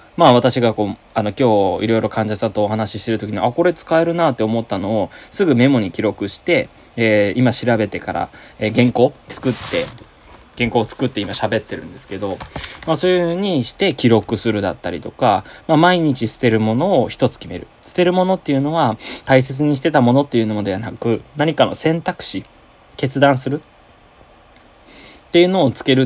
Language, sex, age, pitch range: Japanese, male, 20-39, 110-150 Hz